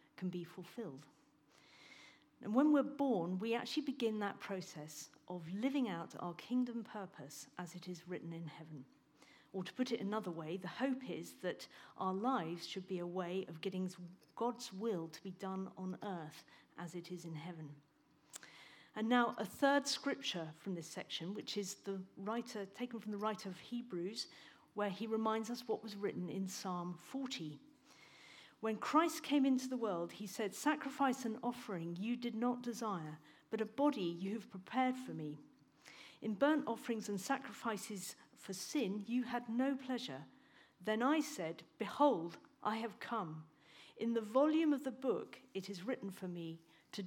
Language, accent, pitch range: English, British, 180-245 Hz